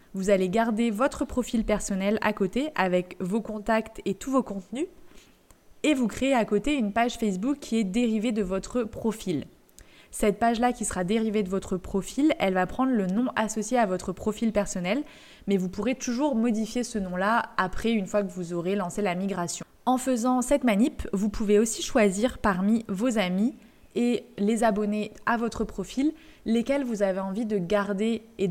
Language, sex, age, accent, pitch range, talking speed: French, female, 20-39, French, 195-240 Hz, 185 wpm